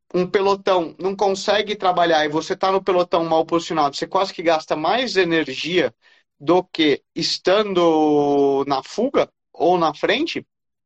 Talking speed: 145 wpm